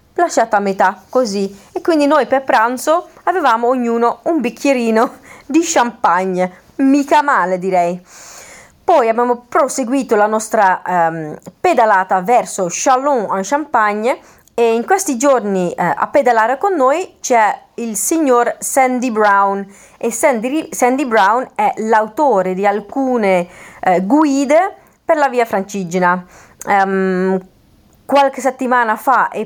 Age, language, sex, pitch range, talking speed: 30-49, Italian, female, 190-265 Hz, 120 wpm